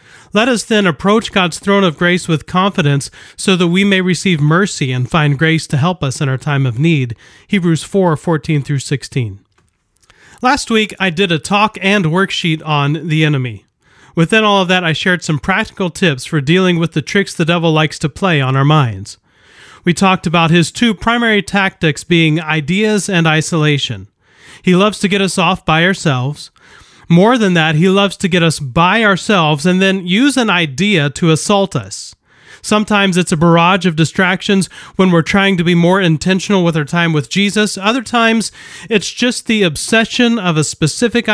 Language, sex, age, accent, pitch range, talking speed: English, male, 30-49, American, 155-200 Hz, 185 wpm